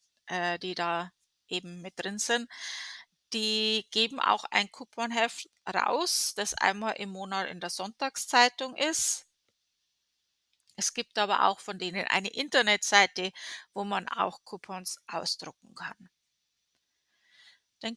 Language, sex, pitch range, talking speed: English, female, 195-240 Hz, 115 wpm